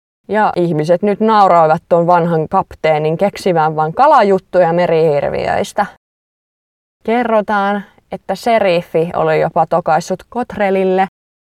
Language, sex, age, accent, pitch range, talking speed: Finnish, female, 20-39, native, 170-230 Hz, 95 wpm